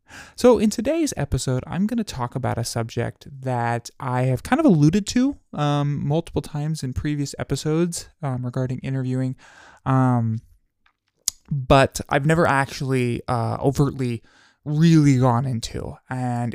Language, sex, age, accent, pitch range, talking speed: English, male, 20-39, American, 125-155 Hz, 140 wpm